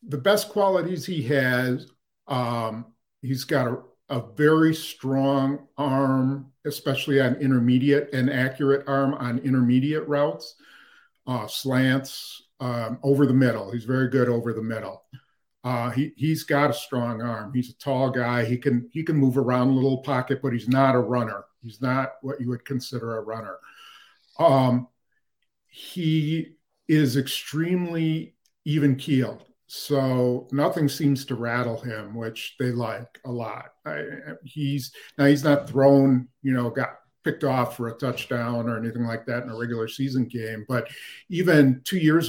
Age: 50-69